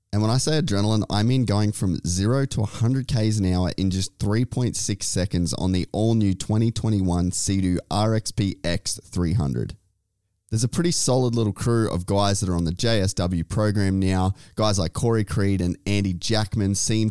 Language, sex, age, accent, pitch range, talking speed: English, male, 20-39, Australian, 90-110 Hz, 175 wpm